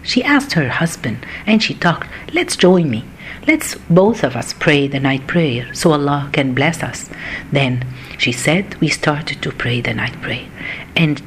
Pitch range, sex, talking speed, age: 135-205 Hz, female, 180 wpm, 50-69